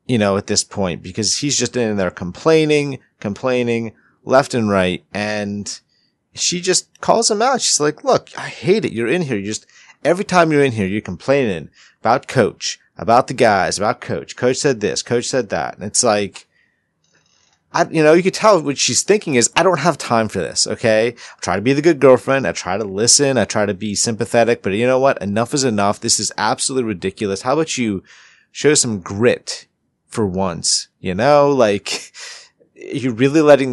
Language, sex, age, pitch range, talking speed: English, male, 30-49, 105-145 Hz, 200 wpm